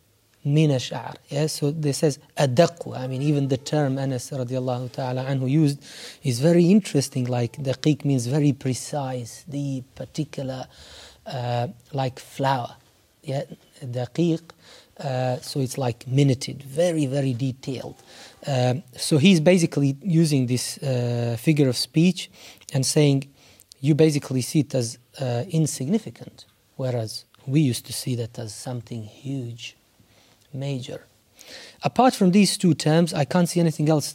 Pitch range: 125-155 Hz